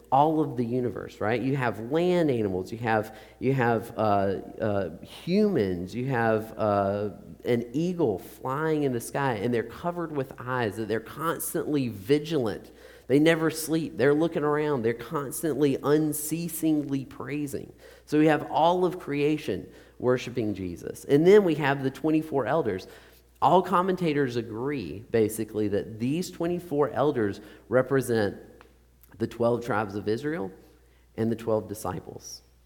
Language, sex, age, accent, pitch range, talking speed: English, male, 40-59, American, 110-150 Hz, 140 wpm